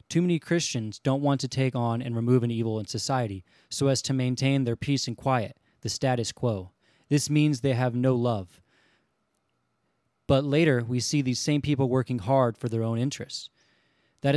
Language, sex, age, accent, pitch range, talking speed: English, male, 20-39, American, 115-140 Hz, 190 wpm